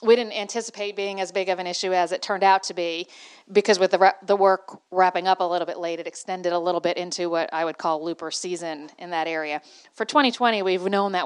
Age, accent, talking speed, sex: 40-59, American, 245 wpm, female